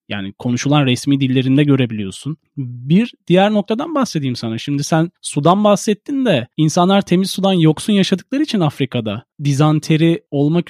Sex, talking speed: male, 135 wpm